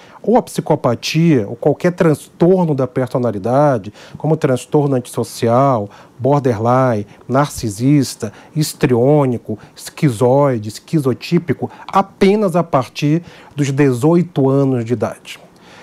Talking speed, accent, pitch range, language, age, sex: 90 wpm, Brazilian, 135-175 Hz, English, 40-59, male